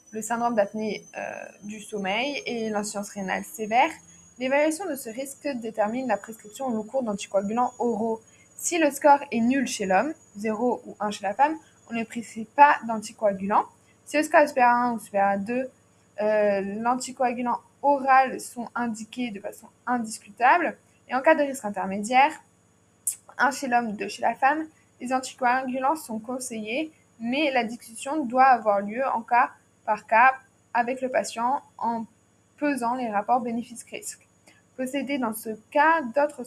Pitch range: 215-265 Hz